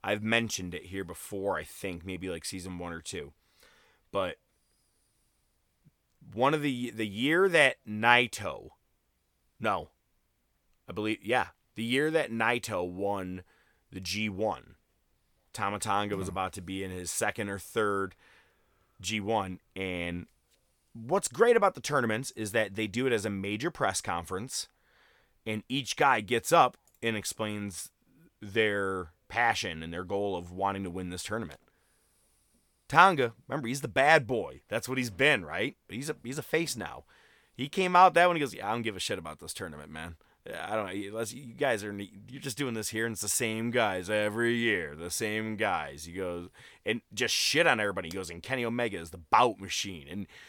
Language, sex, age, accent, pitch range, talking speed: English, male, 30-49, American, 95-120 Hz, 180 wpm